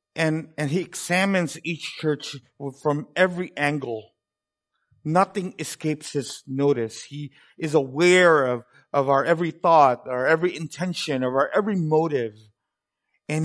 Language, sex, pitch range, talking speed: English, male, 145-195 Hz, 130 wpm